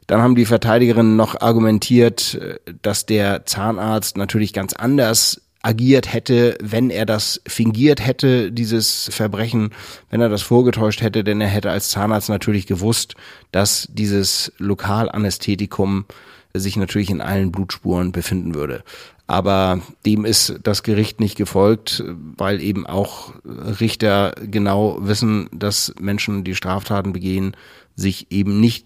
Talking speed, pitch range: 135 wpm, 95-115 Hz